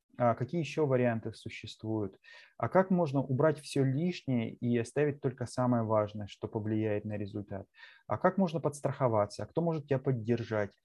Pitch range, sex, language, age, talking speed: 115-135 Hz, male, Russian, 20-39, 155 wpm